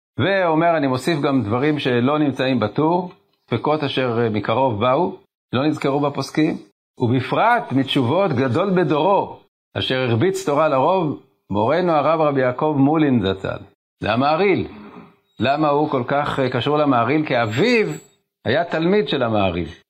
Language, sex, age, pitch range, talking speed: Hebrew, male, 50-69, 115-150 Hz, 130 wpm